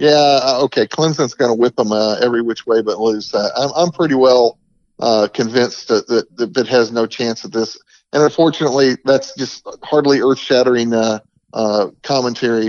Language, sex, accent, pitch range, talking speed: English, male, American, 110-130 Hz, 185 wpm